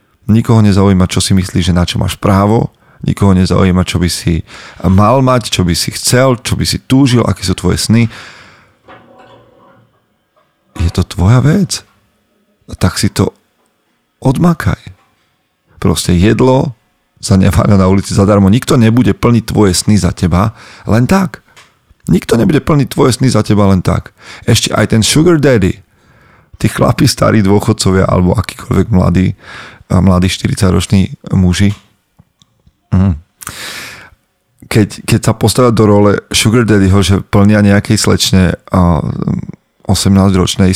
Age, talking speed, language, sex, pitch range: 40-59, 130 wpm, Slovak, male, 95-115 Hz